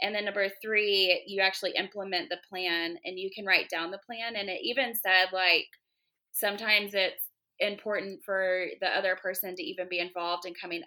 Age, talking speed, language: 20-39, 190 wpm, English